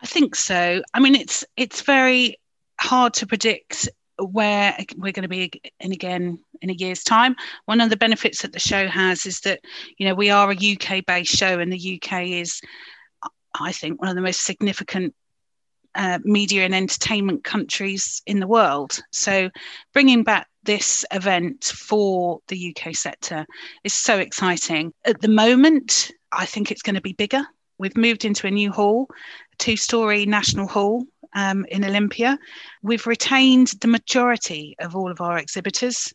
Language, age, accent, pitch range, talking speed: English, 30-49, British, 185-230 Hz, 170 wpm